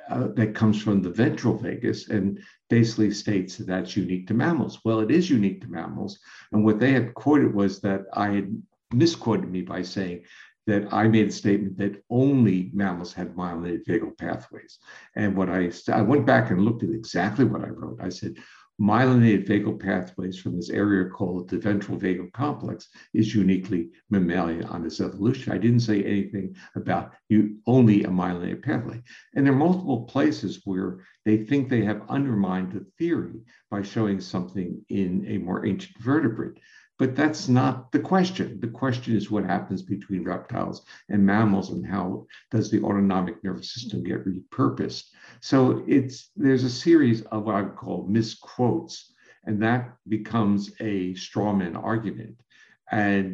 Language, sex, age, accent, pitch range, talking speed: English, male, 60-79, American, 95-115 Hz, 170 wpm